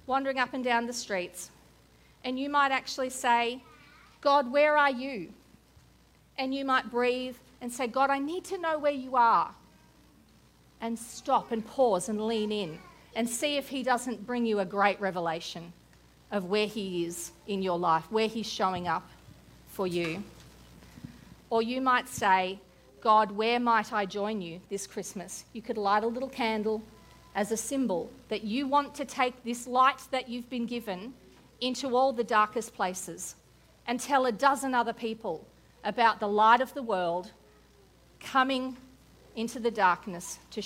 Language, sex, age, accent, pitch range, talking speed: English, female, 40-59, Australian, 180-255 Hz, 165 wpm